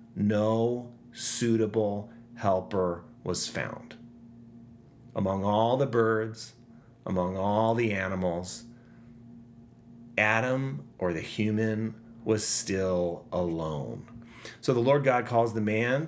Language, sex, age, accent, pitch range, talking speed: English, male, 30-49, American, 100-120 Hz, 100 wpm